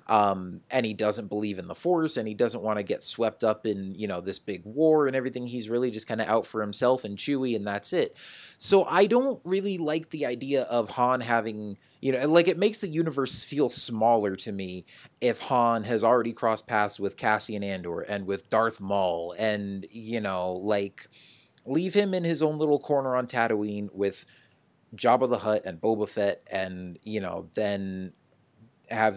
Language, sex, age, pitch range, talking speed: English, male, 30-49, 100-125 Hz, 200 wpm